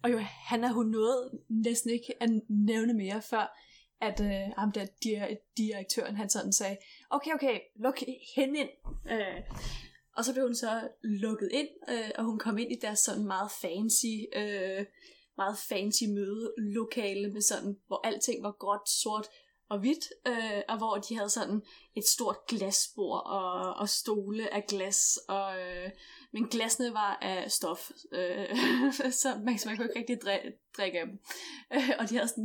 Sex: female